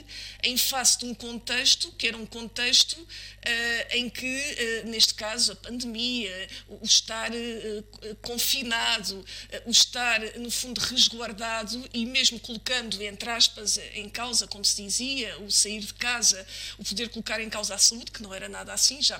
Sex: female